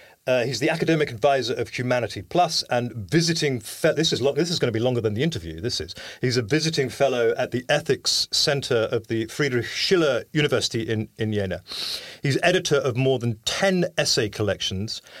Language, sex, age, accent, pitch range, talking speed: English, male, 40-59, British, 110-145 Hz, 195 wpm